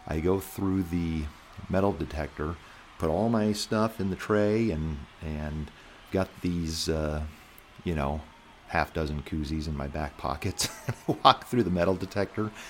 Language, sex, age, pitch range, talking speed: English, male, 40-59, 75-100 Hz, 150 wpm